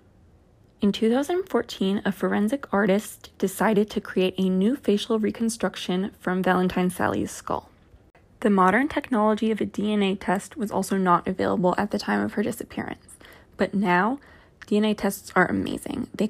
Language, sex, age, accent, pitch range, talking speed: English, female, 20-39, American, 185-220 Hz, 145 wpm